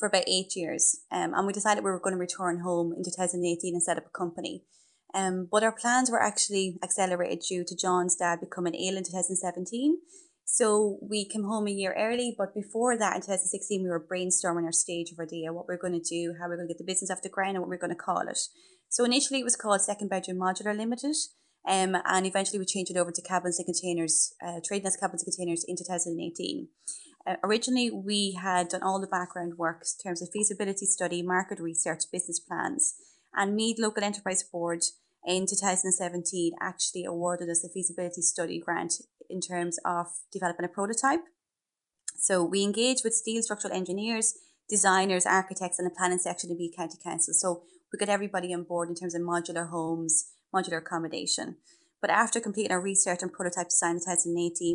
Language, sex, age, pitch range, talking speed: English, female, 20-39, 175-205 Hz, 205 wpm